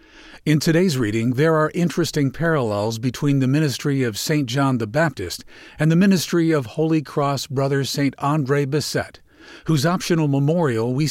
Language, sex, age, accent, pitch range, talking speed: English, male, 50-69, American, 130-160 Hz, 155 wpm